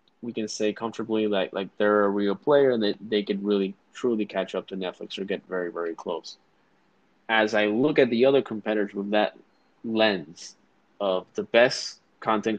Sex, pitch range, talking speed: male, 100-110 Hz, 190 wpm